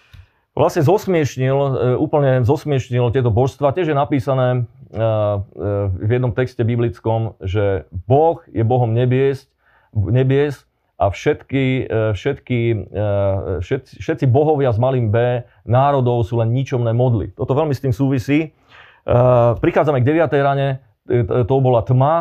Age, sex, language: 30-49, male, Slovak